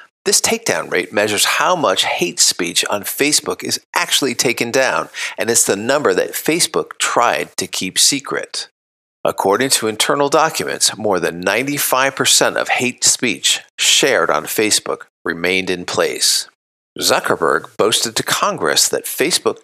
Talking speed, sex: 140 wpm, male